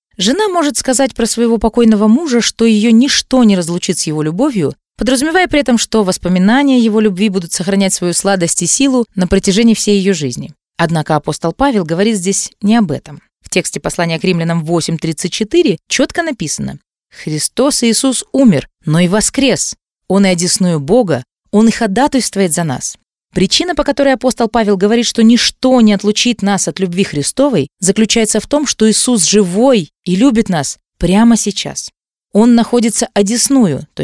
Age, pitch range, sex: 20-39, 185-240 Hz, female